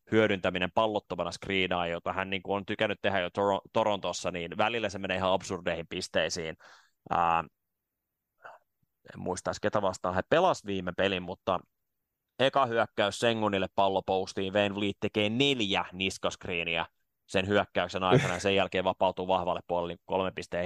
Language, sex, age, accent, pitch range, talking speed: Finnish, male, 20-39, native, 90-100 Hz, 140 wpm